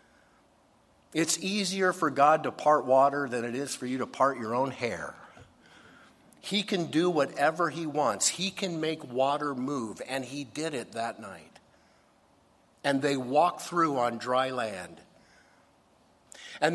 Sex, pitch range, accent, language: male, 120-155 Hz, American, English